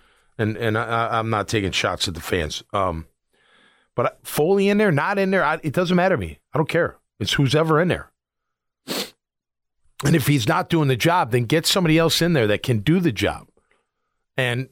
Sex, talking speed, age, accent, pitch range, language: male, 210 wpm, 40-59, American, 115-170 Hz, English